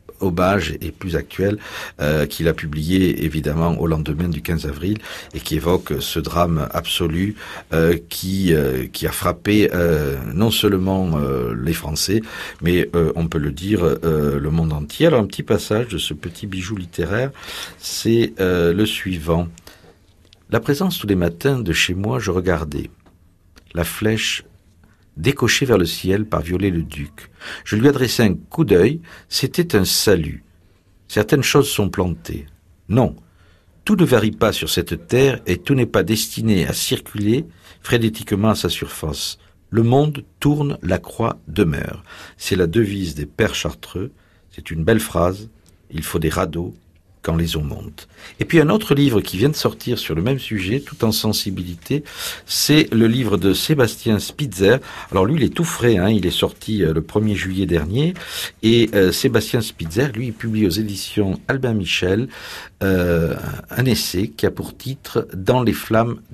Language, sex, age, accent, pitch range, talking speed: French, male, 50-69, French, 85-115 Hz, 170 wpm